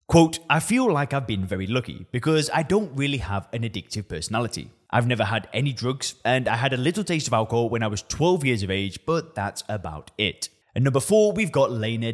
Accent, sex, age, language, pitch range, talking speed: British, male, 20-39, English, 105-150 Hz, 230 wpm